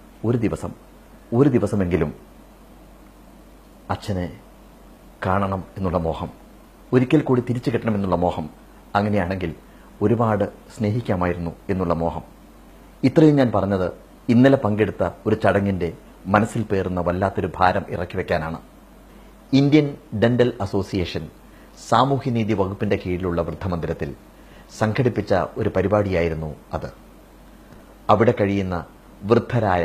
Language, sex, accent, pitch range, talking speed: Malayalam, male, native, 90-115 Hz, 90 wpm